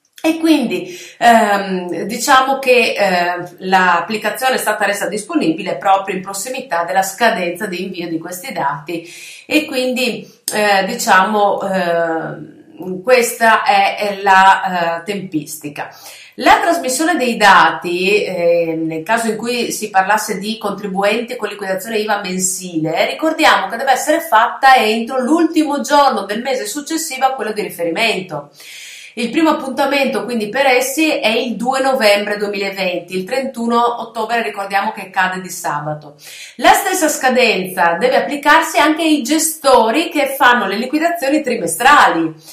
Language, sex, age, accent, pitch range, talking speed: Italian, female, 30-49, native, 185-260 Hz, 125 wpm